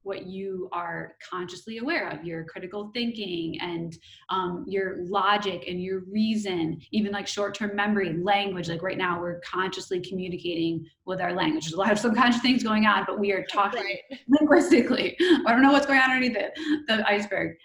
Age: 20-39